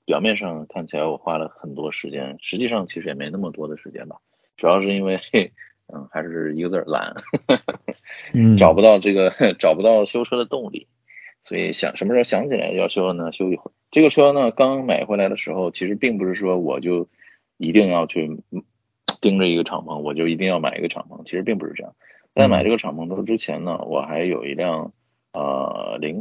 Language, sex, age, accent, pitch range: Chinese, male, 20-39, native, 85-110 Hz